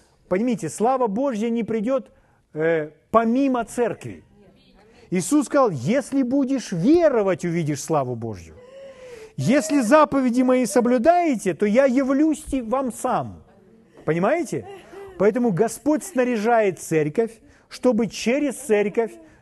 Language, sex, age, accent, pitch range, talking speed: Russian, male, 40-59, native, 175-270 Hz, 100 wpm